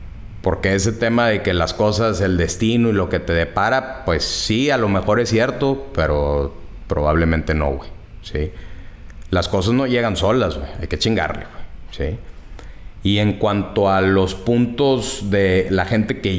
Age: 30-49